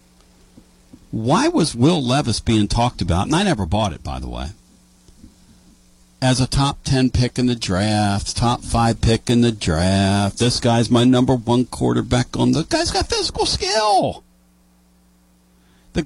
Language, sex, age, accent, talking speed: English, male, 50-69, American, 160 wpm